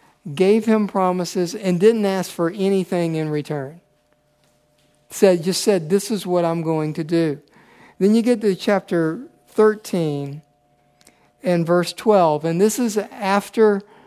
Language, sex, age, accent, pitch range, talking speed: English, male, 50-69, American, 155-190 Hz, 140 wpm